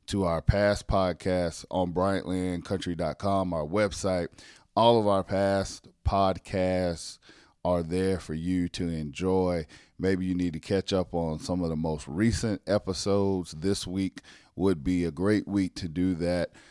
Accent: American